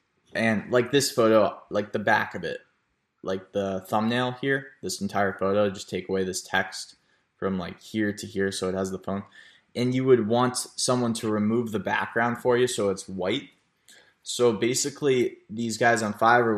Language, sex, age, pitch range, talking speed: English, male, 20-39, 100-115 Hz, 185 wpm